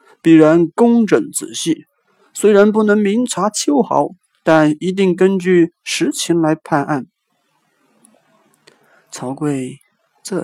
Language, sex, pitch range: Chinese, male, 135-185 Hz